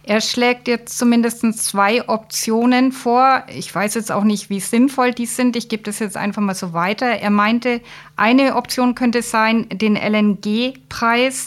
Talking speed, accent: 165 wpm, German